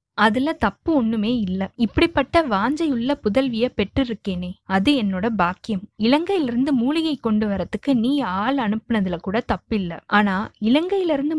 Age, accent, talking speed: 20-39, native, 120 wpm